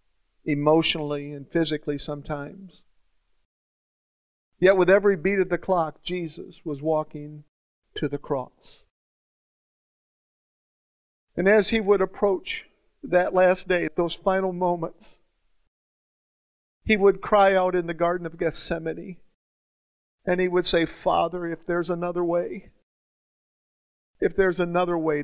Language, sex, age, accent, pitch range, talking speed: English, male, 50-69, American, 150-180 Hz, 120 wpm